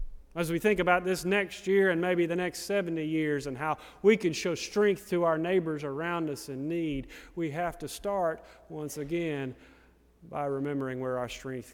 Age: 40-59